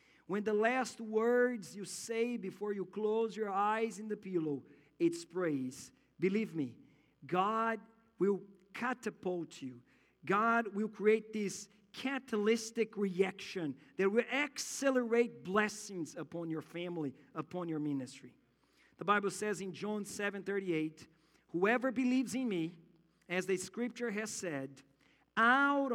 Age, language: 50-69, English